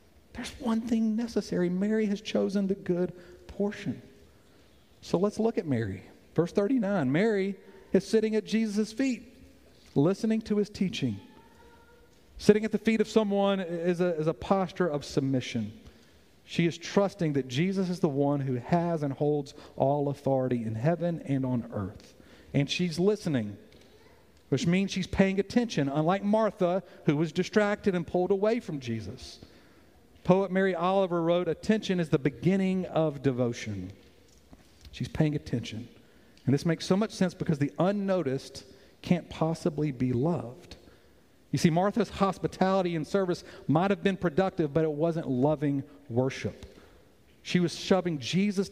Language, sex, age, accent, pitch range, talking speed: English, male, 50-69, American, 140-195 Hz, 150 wpm